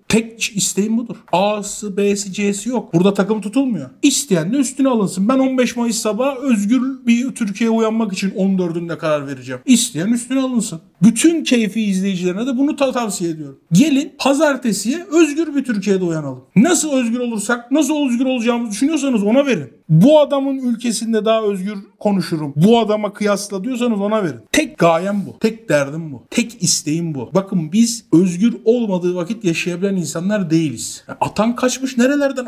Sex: male